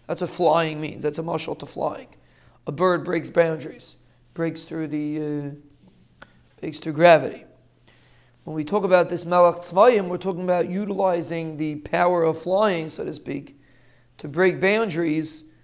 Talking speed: 155 wpm